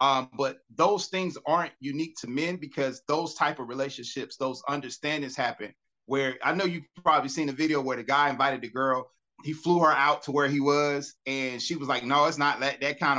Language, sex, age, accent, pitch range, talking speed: English, male, 30-49, American, 140-170 Hz, 220 wpm